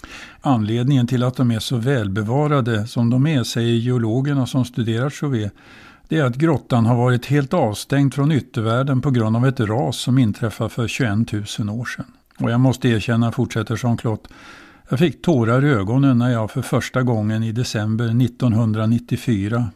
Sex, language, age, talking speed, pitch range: male, Swedish, 60-79, 170 wpm, 115-130 Hz